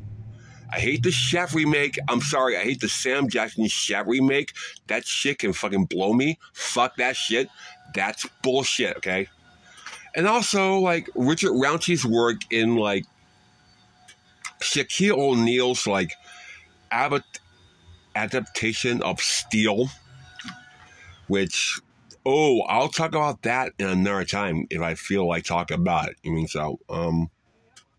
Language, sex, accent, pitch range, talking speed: English, male, American, 95-155 Hz, 130 wpm